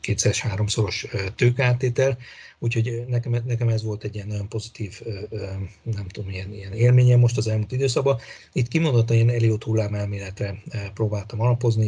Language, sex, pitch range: Hungarian, male, 105-115 Hz